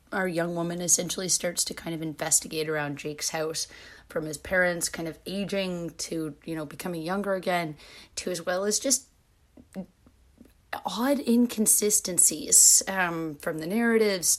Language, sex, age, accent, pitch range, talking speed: English, female, 30-49, American, 160-200 Hz, 145 wpm